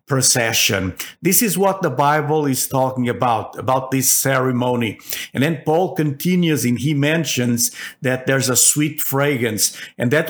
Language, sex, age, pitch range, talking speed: English, male, 50-69, 130-150 Hz, 150 wpm